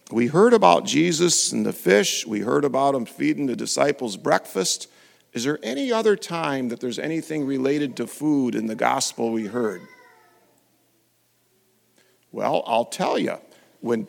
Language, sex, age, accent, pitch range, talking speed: English, male, 50-69, American, 140-230 Hz, 155 wpm